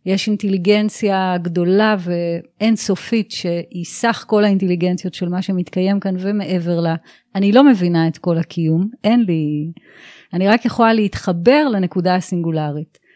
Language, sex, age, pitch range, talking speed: Hebrew, female, 30-49, 175-205 Hz, 130 wpm